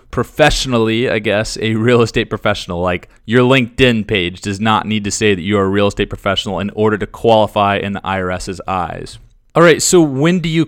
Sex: male